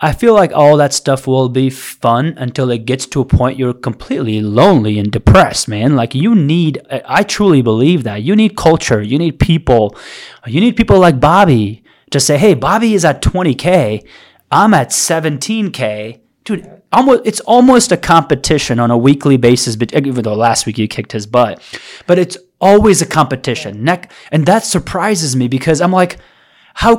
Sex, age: male, 30-49